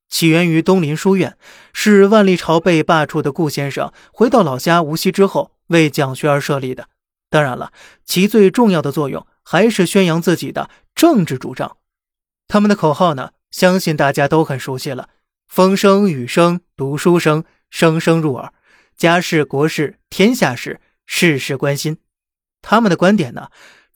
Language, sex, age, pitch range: Chinese, male, 20-39, 150-190 Hz